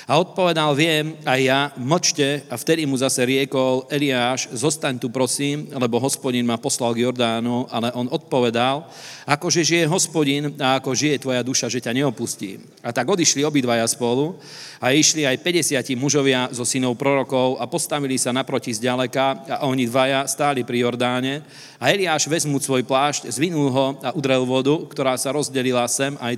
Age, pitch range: 40-59, 130-150 Hz